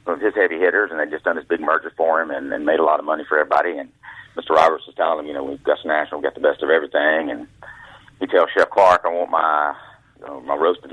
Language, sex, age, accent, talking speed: English, male, 40-59, American, 280 wpm